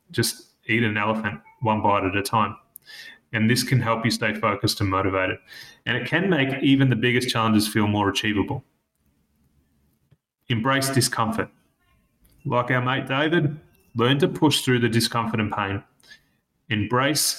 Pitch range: 110-130 Hz